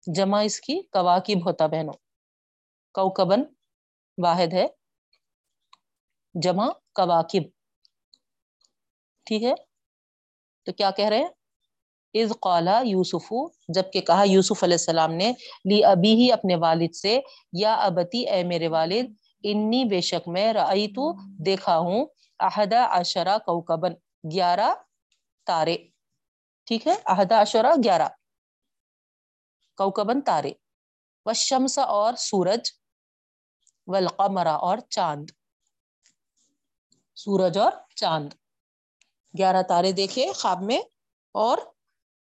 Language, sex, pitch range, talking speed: Urdu, female, 180-230 Hz, 100 wpm